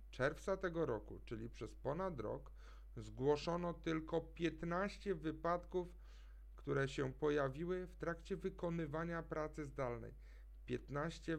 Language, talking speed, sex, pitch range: Polish, 105 wpm, male, 110-160 Hz